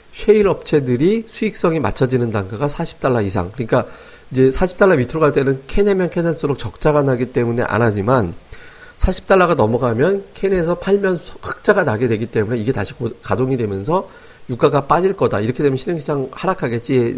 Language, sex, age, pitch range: Korean, male, 40-59, 115-160 Hz